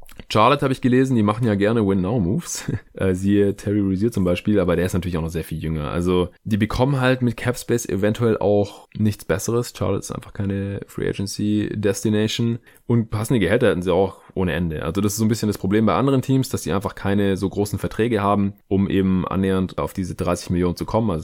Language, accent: German, German